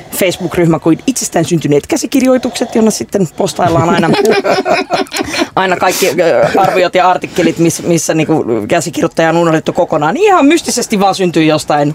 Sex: female